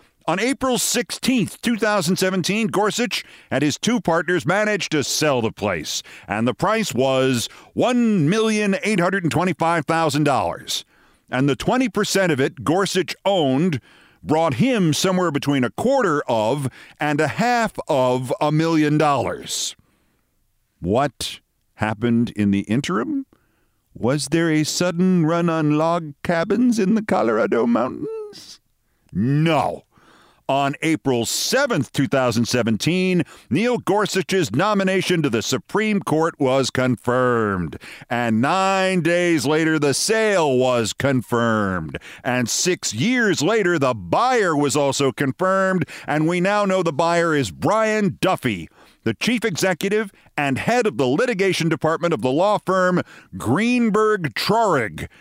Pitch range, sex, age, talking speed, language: 140-215 Hz, male, 50-69, 120 wpm, English